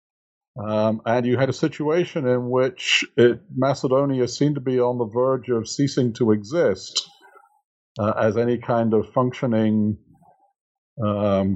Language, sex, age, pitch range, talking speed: English, male, 50-69, 115-140 Hz, 135 wpm